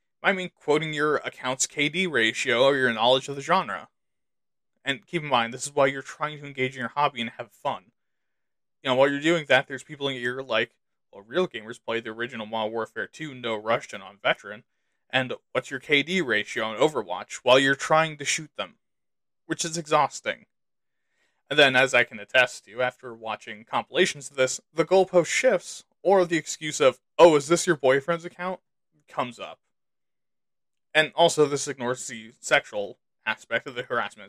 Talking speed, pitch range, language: 190 wpm, 125-165 Hz, English